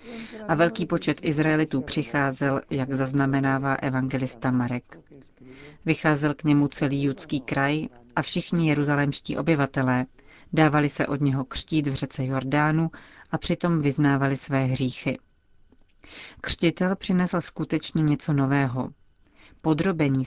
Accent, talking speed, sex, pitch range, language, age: native, 115 wpm, female, 135-160 Hz, Czech, 40-59